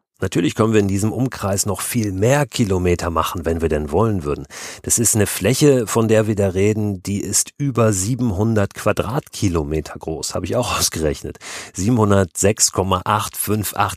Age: 40-59